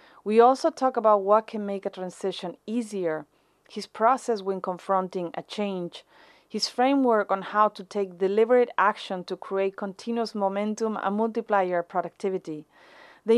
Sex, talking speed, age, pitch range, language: female, 150 wpm, 30-49, 185-235 Hz, English